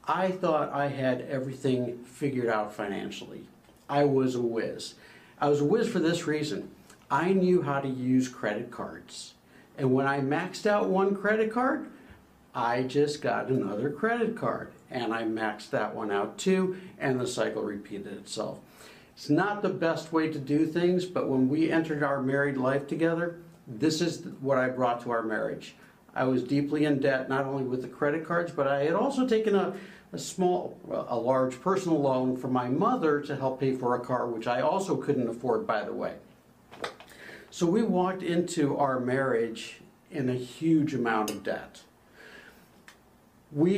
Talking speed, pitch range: 175 wpm, 130-170 Hz